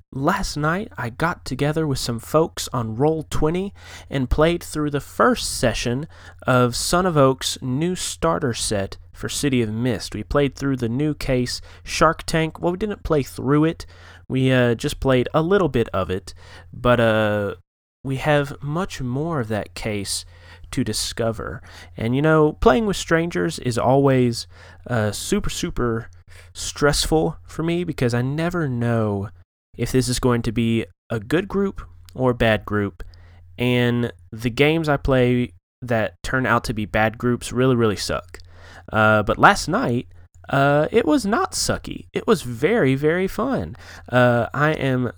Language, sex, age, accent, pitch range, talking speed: English, male, 30-49, American, 100-140 Hz, 165 wpm